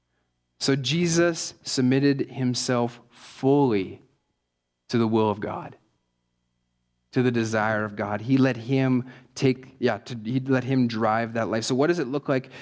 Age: 30-49